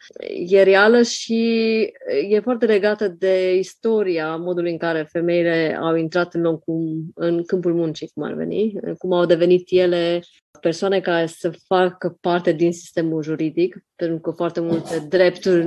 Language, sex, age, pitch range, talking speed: Romanian, female, 20-39, 165-185 Hz, 150 wpm